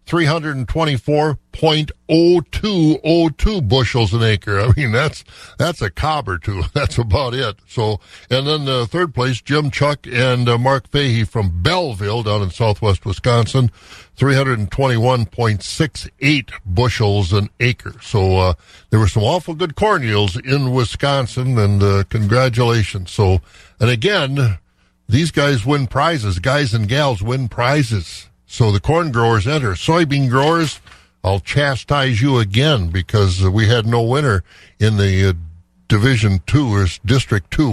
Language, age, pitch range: English, 60-79, 105-145 Hz